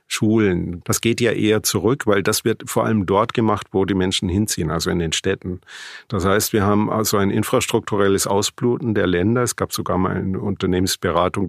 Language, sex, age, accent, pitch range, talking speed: German, male, 50-69, German, 90-110 Hz, 195 wpm